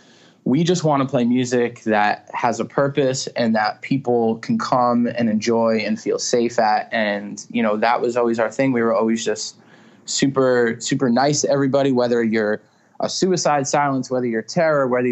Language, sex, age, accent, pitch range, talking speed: English, male, 20-39, American, 115-135 Hz, 185 wpm